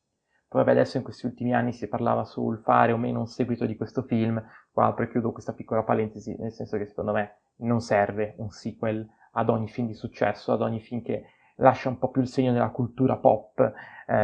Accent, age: native, 20-39